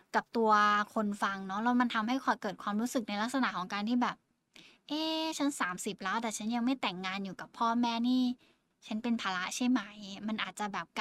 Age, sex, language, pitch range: 10-29, female, Thai, 210-265 Hz